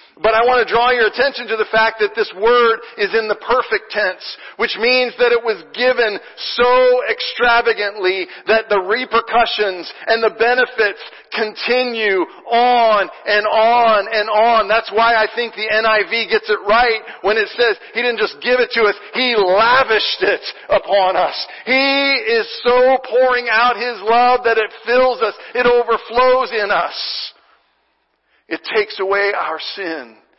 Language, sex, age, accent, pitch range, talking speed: English, male, 50-69, American, 180-235 Hz, 160 wpm